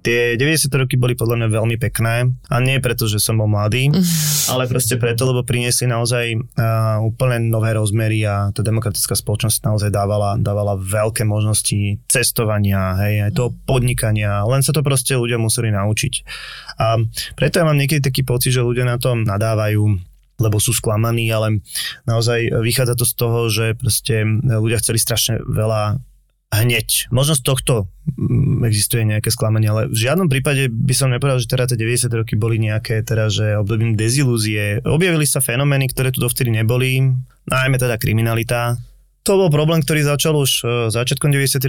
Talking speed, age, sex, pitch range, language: 165 wpm, 20-39, male, 110-130 Hz, Slovak